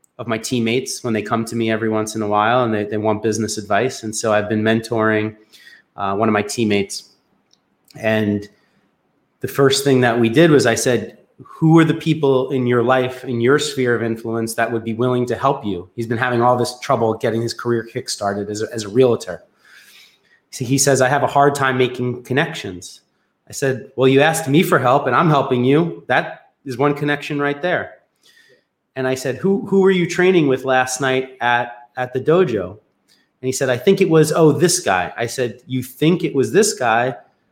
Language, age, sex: English, 30-49, male